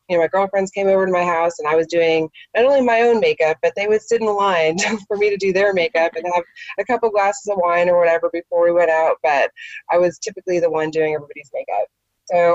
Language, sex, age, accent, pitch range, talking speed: English, female, 20-39, American, 170-200 Hz, 255 wpm